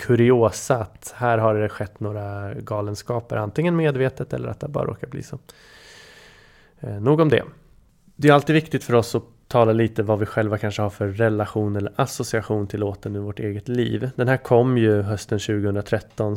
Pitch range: 110-125 Hz